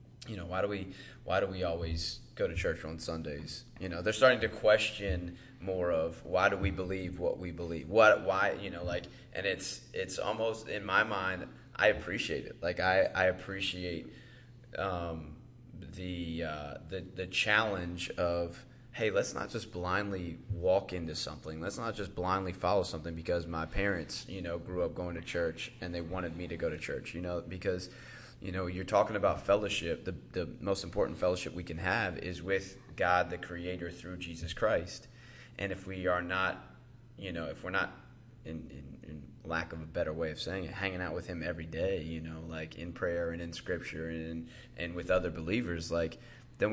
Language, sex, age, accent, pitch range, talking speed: English, male, 20-39, American, 85-100 Hz, 200 wpm